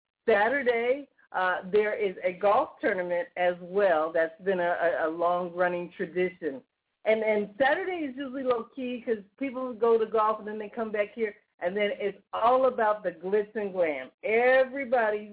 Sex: female